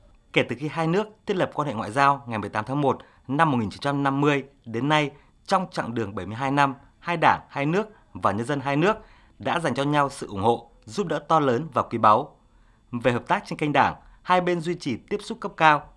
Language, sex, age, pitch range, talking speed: Vietnamese, male, 20-39, 120-160 Hz, 230 wpm